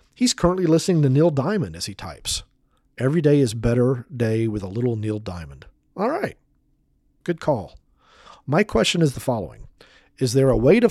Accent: American